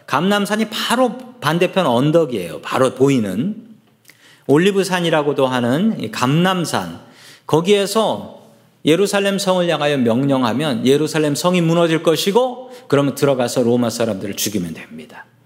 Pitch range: 150-215 Hz